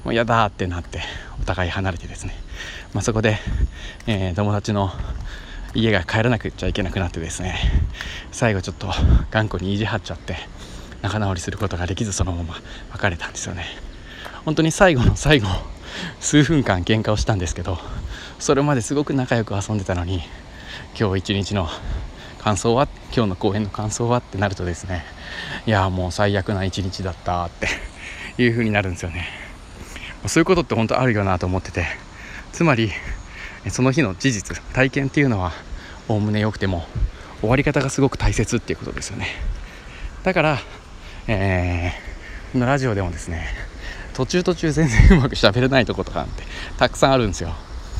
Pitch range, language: 85-115 Hz, Japanese